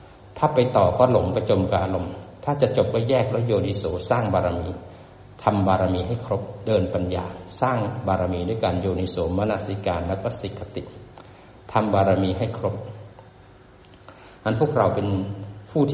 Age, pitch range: 60-79, 100-130 Hz